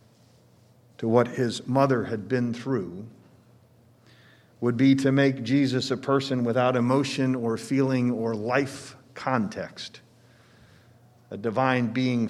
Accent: American